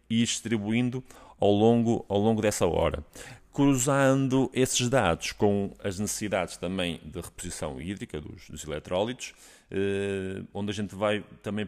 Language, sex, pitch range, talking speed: Portuguese, male, 90-115 Hz, 135 wpm